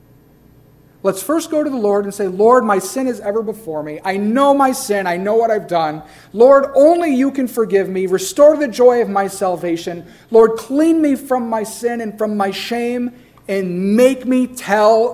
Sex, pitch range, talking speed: male, 145-220 Hz, 200 wpm